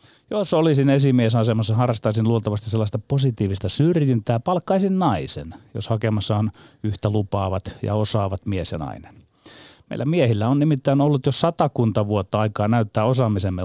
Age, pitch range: 30-49, 105-140 Hz